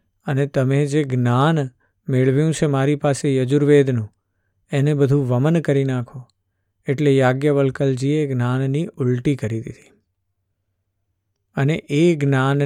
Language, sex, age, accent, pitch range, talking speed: Gujarati, male, 50-69, native, 100-150 Hz, 95 wpm